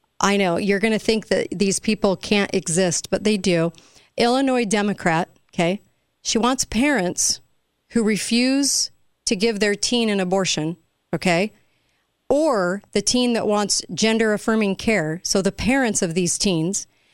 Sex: female